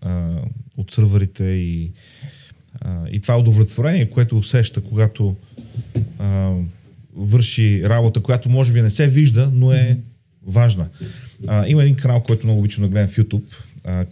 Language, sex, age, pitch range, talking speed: Bulgarian, male, 40-59, 100-130 Hz, 140 wpm